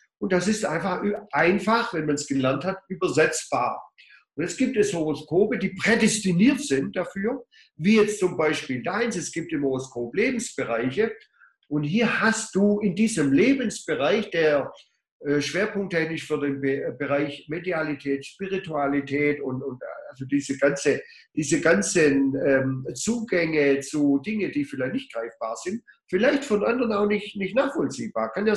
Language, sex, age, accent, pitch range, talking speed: German, male, 50-69, German, 145-210 Hz, 150 wpm